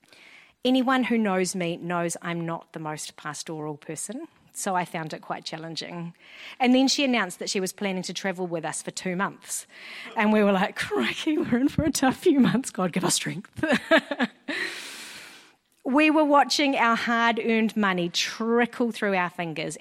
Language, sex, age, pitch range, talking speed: English, female, 30-49, 170-225 Hz, 175 wpm